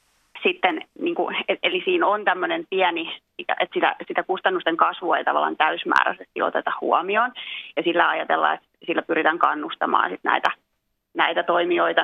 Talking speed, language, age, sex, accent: 145 wpm, Finnish, 30-49, female, native